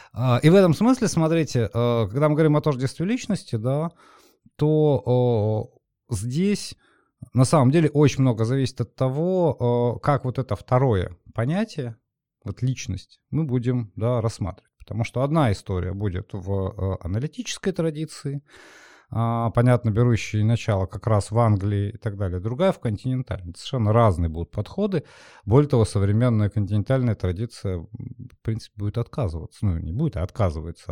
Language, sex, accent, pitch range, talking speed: Russian, male, native, 110-145 Hz, 140 wpm